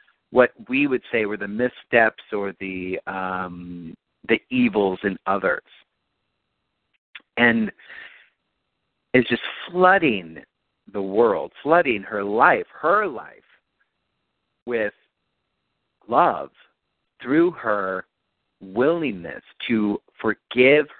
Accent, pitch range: American, 105-140 Hz